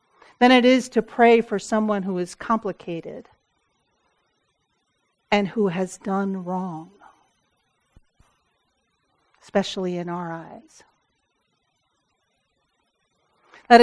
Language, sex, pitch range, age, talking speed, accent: English, female, 195-240 Hz, 50-69, 85 wpm, American